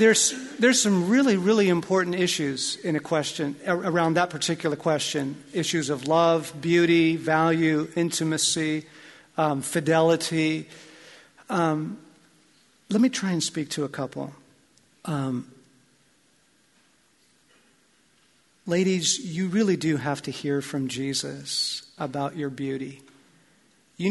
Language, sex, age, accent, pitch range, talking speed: English, male, 50-69, American, 145-170 Hz, 110 wpm